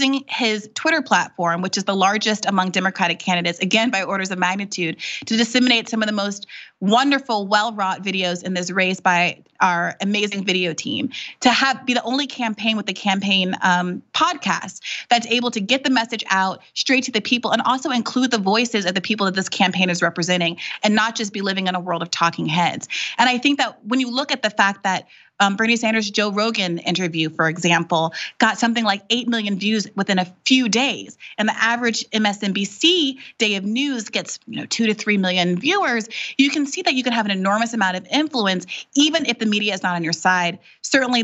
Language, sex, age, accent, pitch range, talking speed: English, female, 30-49, American, 185-230 Hz, 210 wpm